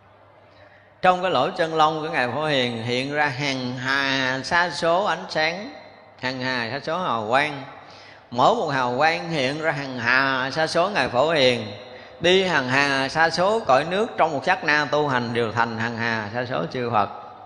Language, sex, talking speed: Vietnamese, male, 195 wpm